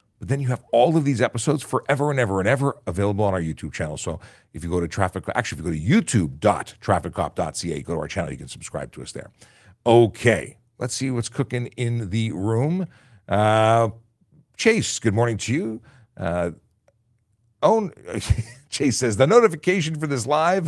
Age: 50-69